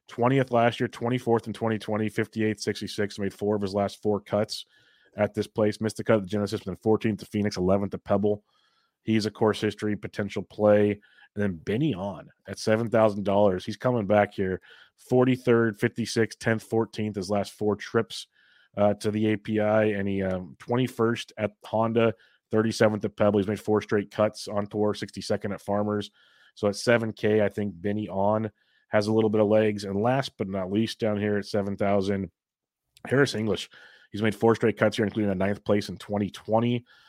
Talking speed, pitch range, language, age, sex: 185 wpm, 100-115 Hz, English, 30-49, male